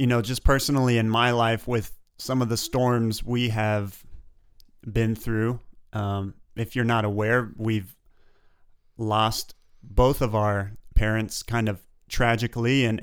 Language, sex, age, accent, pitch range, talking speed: English, male, 30-49, American, 105-125 Hz, 145 wpm